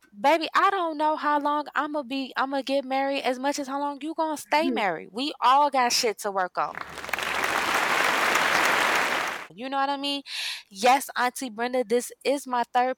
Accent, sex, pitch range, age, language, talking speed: American, female, 185-270 Hz, 20-39, English, 180 wpm